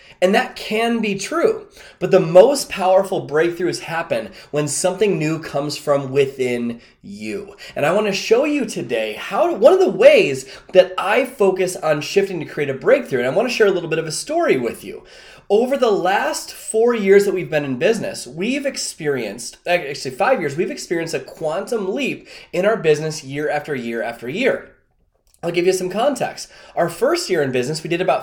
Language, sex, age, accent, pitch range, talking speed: English, male, 20-39, American, 155-235 Hz, 200 wpm